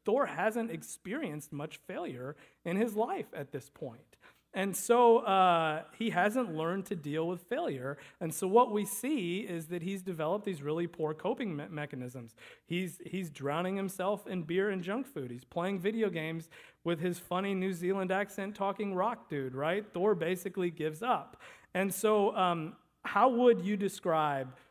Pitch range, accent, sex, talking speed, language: 145-190 Hz, American, male, 170 wpm, English